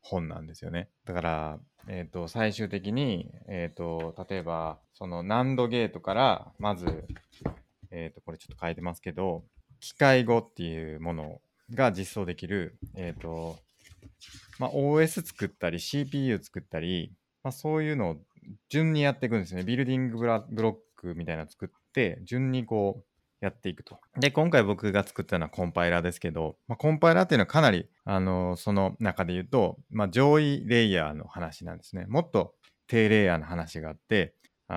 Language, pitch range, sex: Japanese, 85-125 Hz, male